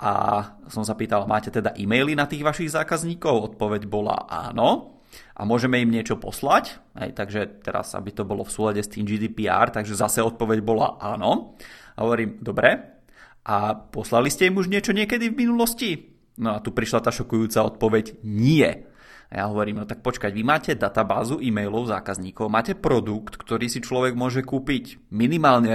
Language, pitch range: Czech, 105-125 Hz